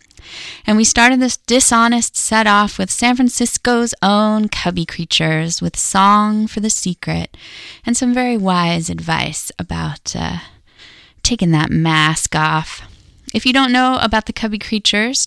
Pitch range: 170-235 Hz